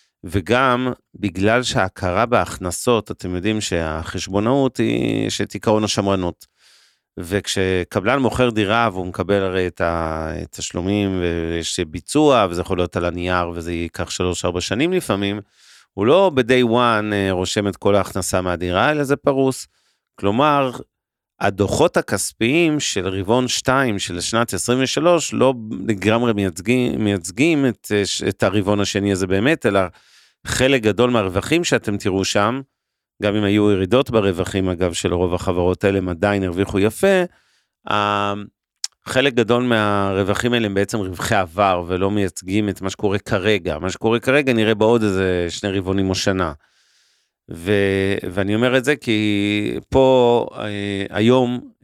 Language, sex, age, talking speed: Hebrew, male, 40-59, 130 wpm